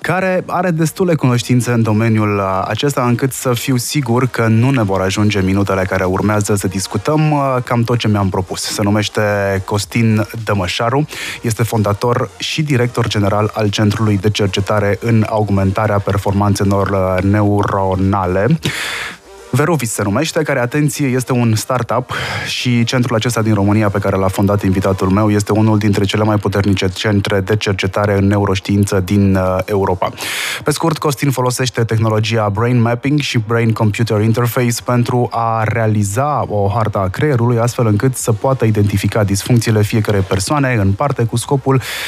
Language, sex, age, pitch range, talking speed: Romanian, male, 20-39, 100-125 Hz, 150 wpm